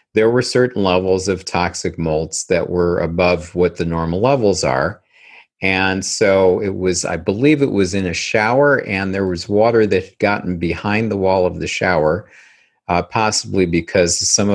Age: 50-69